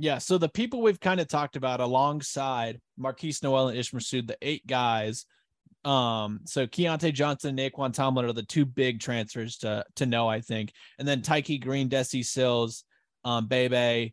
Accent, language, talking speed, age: American, English, 180 wpm, 20-39